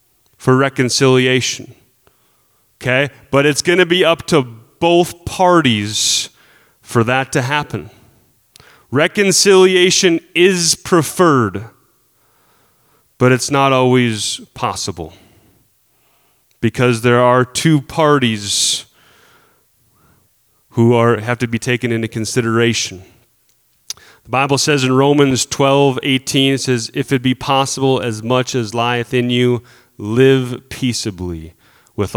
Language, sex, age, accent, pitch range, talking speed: English, male, 30-49, American, 115-150 Hz, 110 wpm